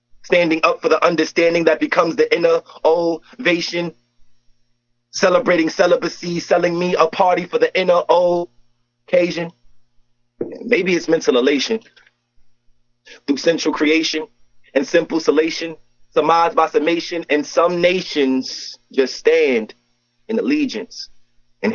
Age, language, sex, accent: 30-49, English, male, American